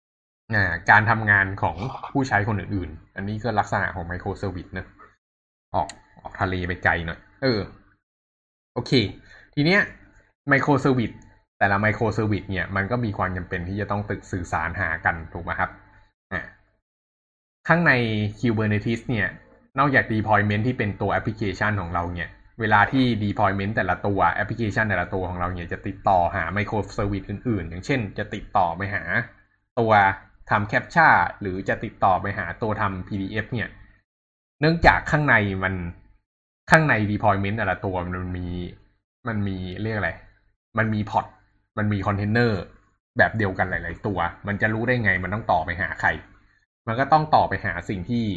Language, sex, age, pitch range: Thai, male, 20-39, 95-110 Hz